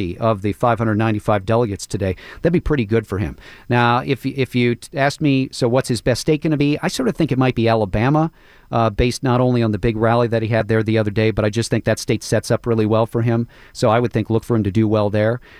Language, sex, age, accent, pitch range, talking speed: English, male, 40-59, American, 110-130 Hz, 275 wpm